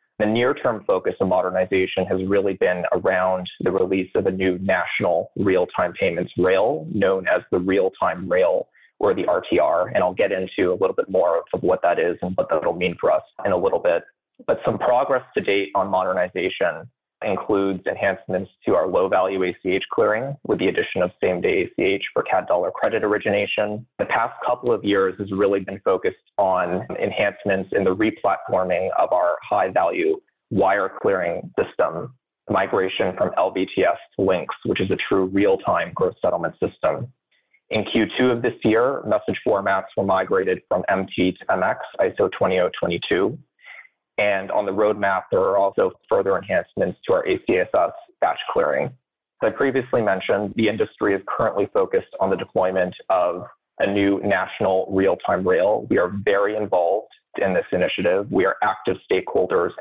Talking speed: 165 wpm